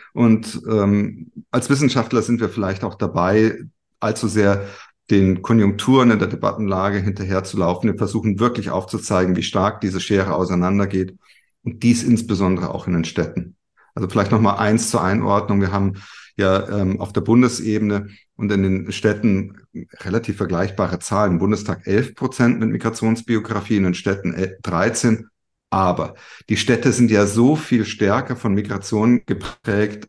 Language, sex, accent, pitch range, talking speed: German, male, German, 95-110 Hz, 150 wpm